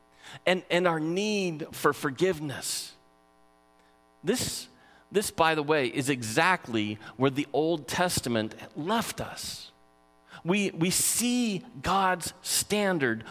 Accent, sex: American, male